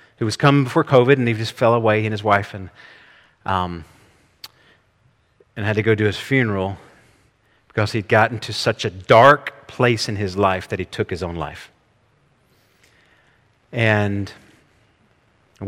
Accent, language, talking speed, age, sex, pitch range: American, English, 160 wpm, 30-49, male, 105-125 Hz